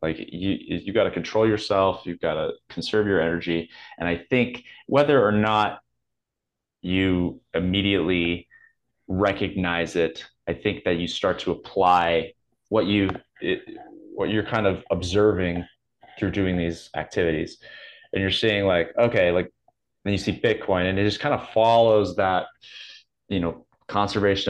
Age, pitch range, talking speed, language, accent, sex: 20-39, 85-105 Hz, 150 wpm, English, American, male